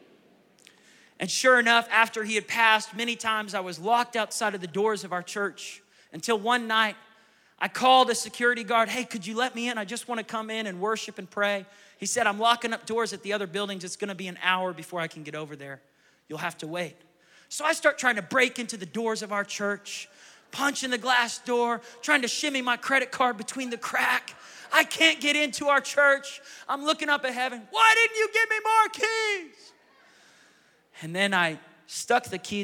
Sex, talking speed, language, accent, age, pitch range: male, 215 wpm, English, American, 30-49, 180-240 Hz